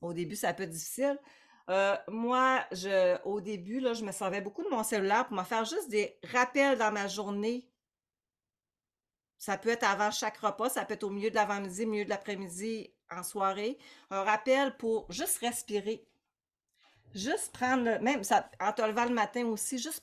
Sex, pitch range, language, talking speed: female, 195-250 Hz, French, 190 wpm